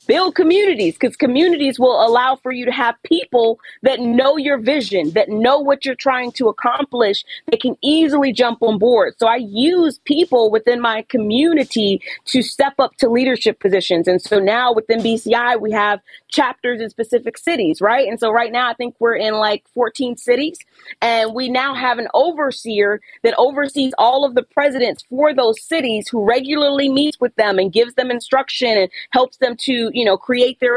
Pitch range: 235-295 Hz